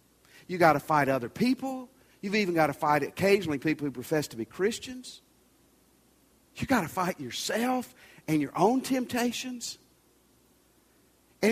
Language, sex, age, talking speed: English, male, 50-69, 145 wpm